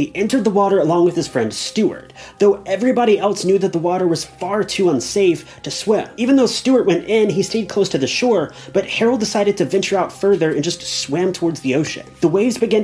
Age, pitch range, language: 30-49, 145-195 Hz, English